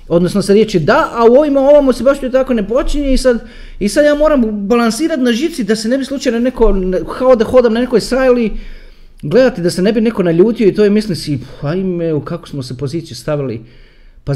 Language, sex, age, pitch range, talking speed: Croatian, male, 40-59, 130-200 Hz, 235 wpm